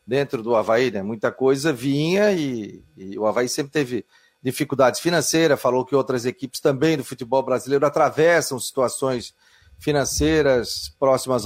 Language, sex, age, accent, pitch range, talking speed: Portuguese, male, 40-59, Brazilian, 125-170 Hz, 140 wpm